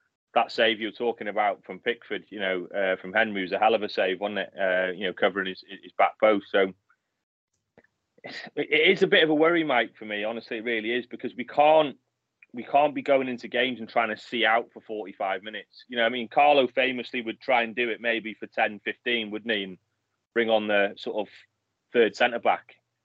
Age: 30-49